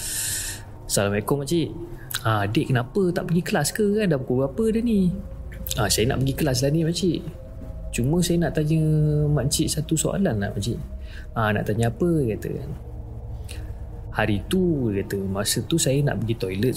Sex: male